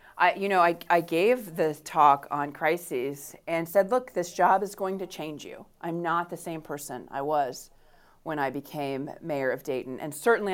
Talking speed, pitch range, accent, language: 200 wpm, 145-180 Hz, American, English